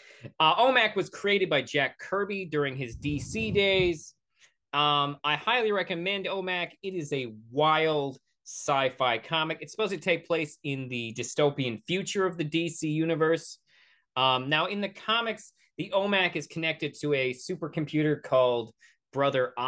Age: 30-49